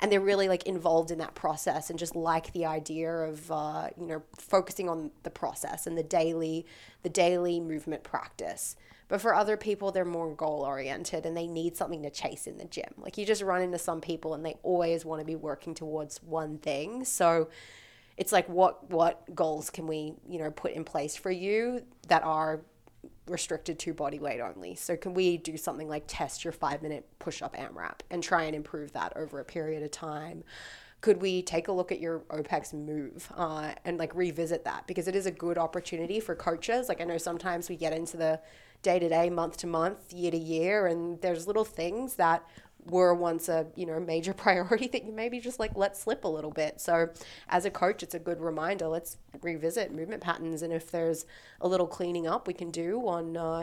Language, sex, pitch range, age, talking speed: English, female, 160-180 Hz, 20-39, 205 wpm